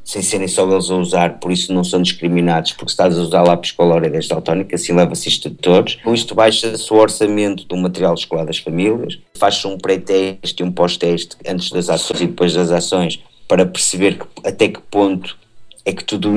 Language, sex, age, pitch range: Portuguese, male, 50-69, 90-100 Hz